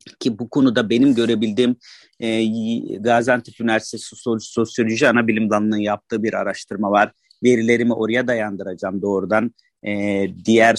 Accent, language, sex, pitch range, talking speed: native, Turkish, male, 110-135 Hz, 115 wpm